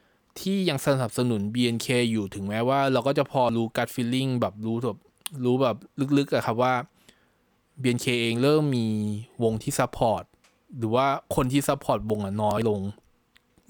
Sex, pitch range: male, 110-145 Hz